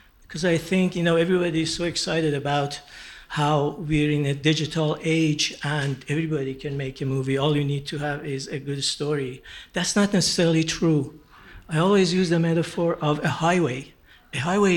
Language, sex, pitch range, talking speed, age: English, male, 145-170 Hz, 185 wpm, 60-79